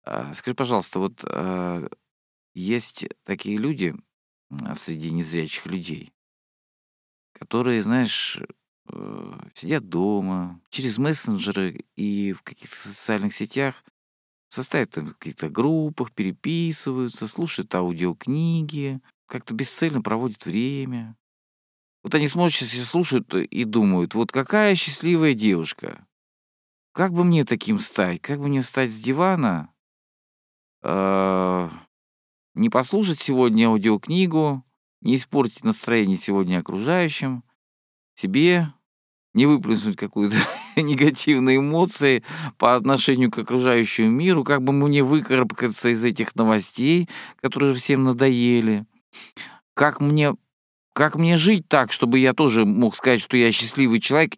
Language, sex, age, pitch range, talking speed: Russian, male, 50-69, 105-150 Hz, 110 wpm